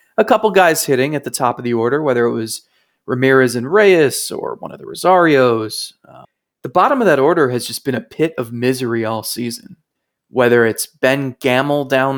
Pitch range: 120-150 Hz